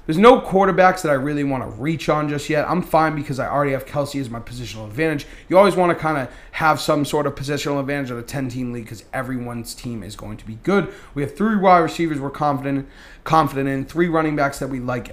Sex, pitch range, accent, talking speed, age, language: male, 125-155 Hz, American, 245 wpm, 30-49, English